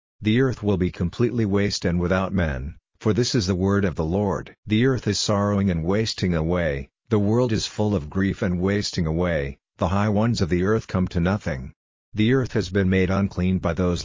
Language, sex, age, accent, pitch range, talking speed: English, male, 50-69, American, 90-105 Hz, 215 wpm